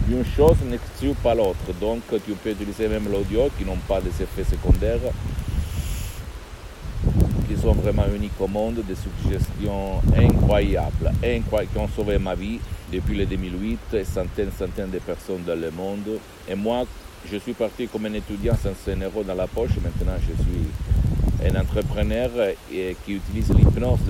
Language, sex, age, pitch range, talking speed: Italian, male, 50-69, 85-105 Hz, 160 wpm